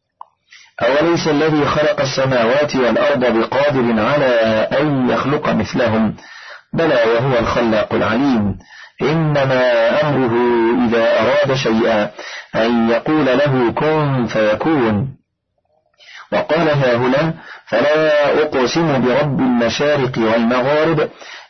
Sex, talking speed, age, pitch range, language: male, 85 wpm, 40-59, 115-150 Hz, Arabic